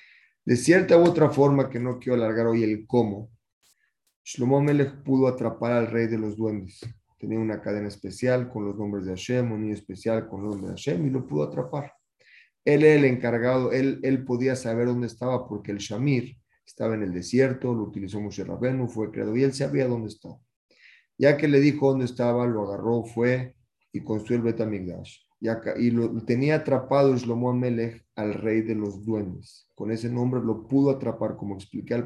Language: Spanish